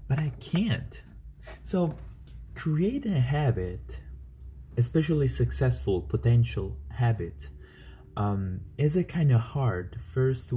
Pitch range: 100-130 Hz